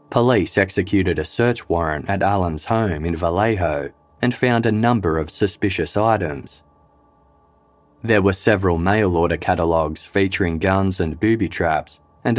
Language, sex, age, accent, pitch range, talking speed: English, male, 20-39, Australian, 85-105 Hz, 140 wpm